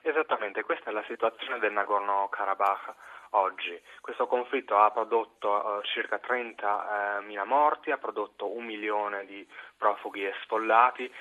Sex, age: male, 30-49